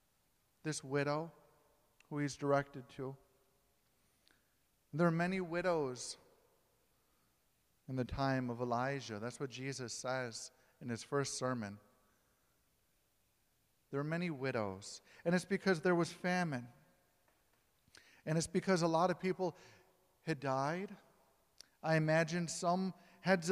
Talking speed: 115 wpm